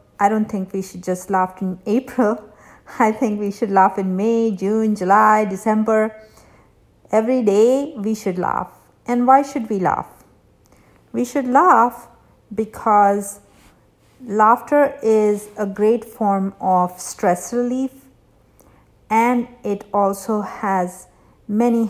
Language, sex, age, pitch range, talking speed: English, female, 50-69, 195-230 Hz, 125 wpm